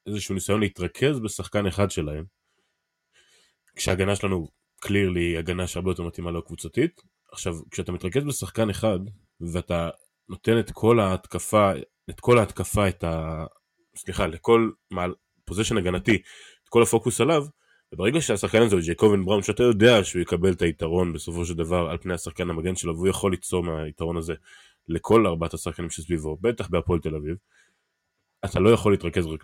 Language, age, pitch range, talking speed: Hebrew, 20-39, 85-100 Hz, 155 wpm